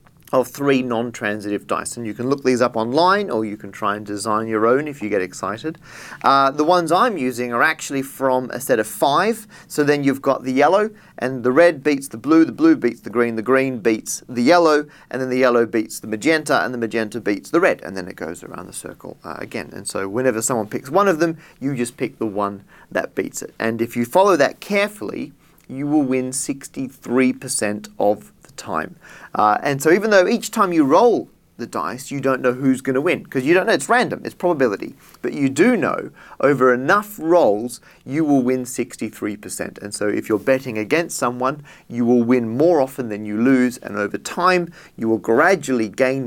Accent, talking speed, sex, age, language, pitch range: Australian, 215 wpm, male, 30-49, English, 115-150 Hz